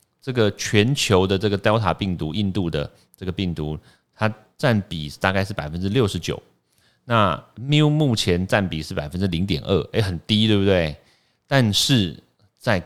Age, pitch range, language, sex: 30-49, 85-105 Hz, Chinese, male